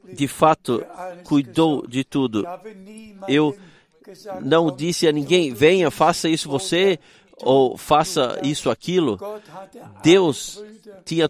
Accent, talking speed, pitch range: Brazilian, 105 wpm, 150-195 Hz